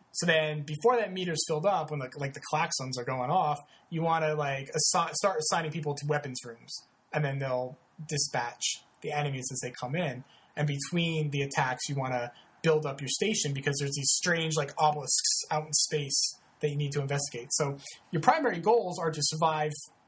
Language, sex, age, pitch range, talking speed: English, male, 20-39, 140-170 Hz, 205 wpm